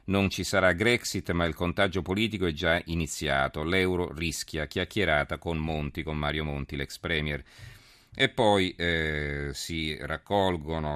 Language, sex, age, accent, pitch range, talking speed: Italian, male, 40-59, native, 75-95 Hz, 140 wpm